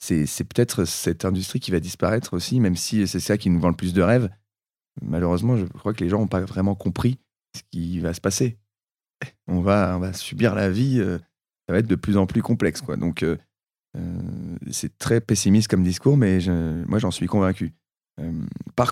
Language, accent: French, French